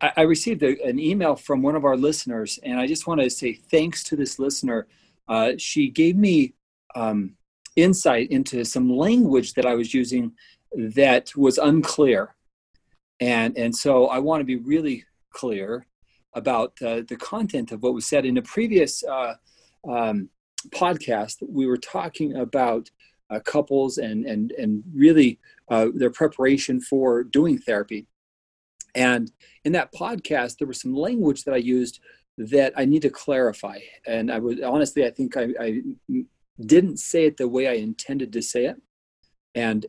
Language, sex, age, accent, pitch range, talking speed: English, male, 40-59, American, 120-165 Hz, 165 wpm